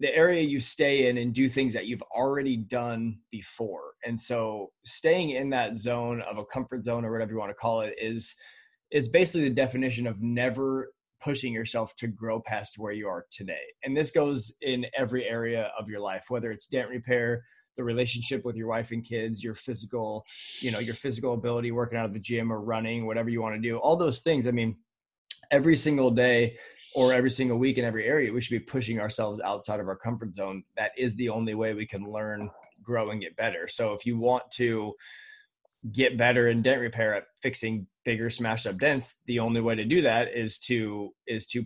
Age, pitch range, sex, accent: 20-39, 110-130 Hz, male, American